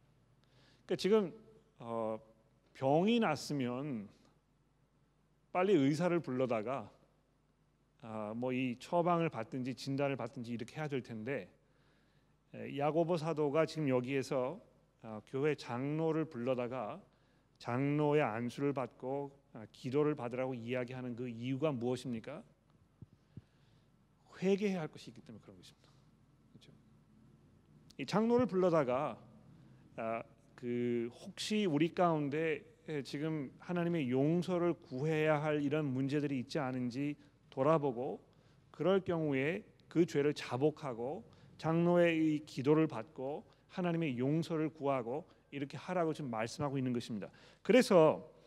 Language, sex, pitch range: Korean, male, 130-160 Hz